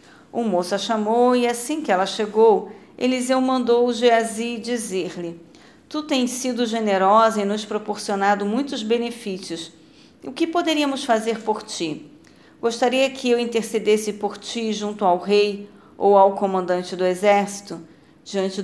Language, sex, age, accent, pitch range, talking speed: Portuguese, female, 40-59, Brazilian, 195-235 Hz, 140 wpm